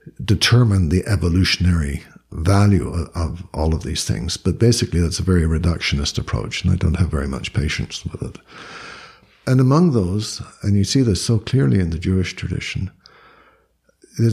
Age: 60-79